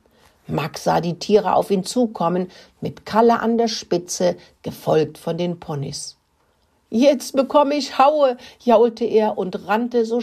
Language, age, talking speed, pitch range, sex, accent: German, 60-79, 145 wpm, 160-235 Hz, female, German